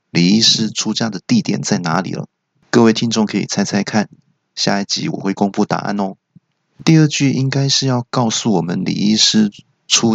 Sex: male